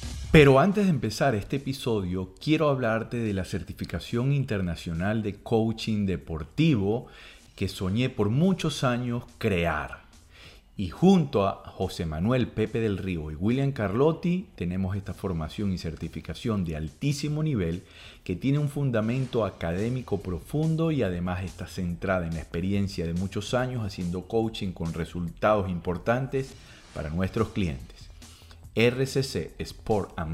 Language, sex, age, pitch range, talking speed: Spanish, male, 40-59, 90-120 Hz, 135 wpm